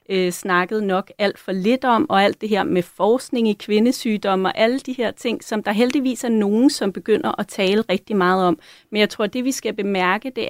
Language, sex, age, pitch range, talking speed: Danish, female, 30-49, 195-235 Hz, 230 wpm